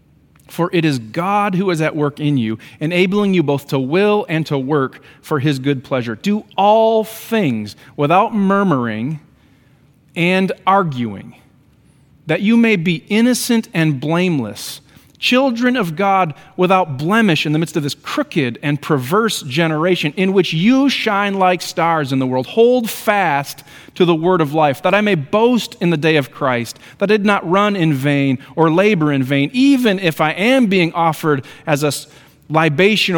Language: English